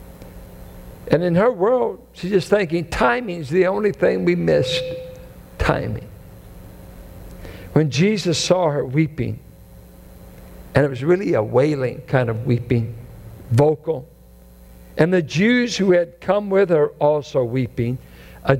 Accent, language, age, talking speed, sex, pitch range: American, English, 60-79, 130 wpm, male, 125-175 Hz